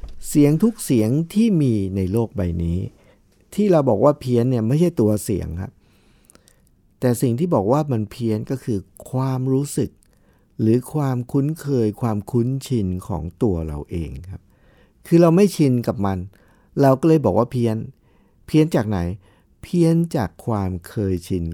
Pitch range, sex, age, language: 100-140 Hz, male, 60-79, Thai